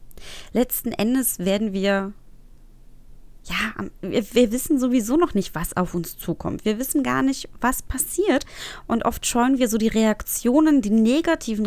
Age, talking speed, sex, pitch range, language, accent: 20-39, 155 wpm, female, 175-230 Hz, German, German